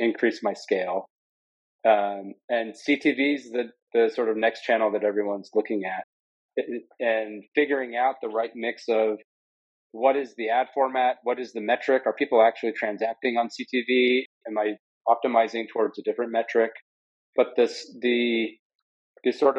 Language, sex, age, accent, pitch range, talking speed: English, male, 30-49, American, 105-125 Hz, 150 wpm